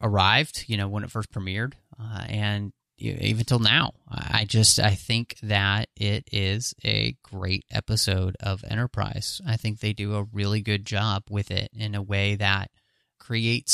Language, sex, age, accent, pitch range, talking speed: English, male, 30-49, American, 105-125 Hz, 180 wpm